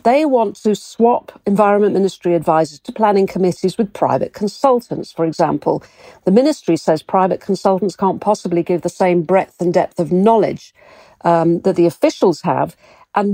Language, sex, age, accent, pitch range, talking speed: English, female, 50-69, British, 175-215 Hz, 160 wpm